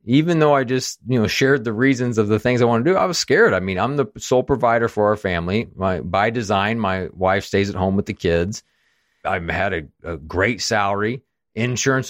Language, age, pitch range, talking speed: English, 40-59, 95-130 Hz, 230 wpm